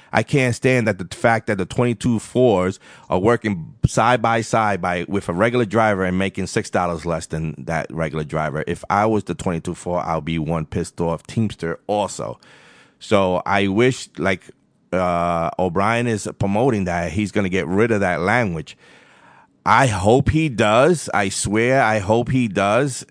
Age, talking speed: 30-49, 180 wpm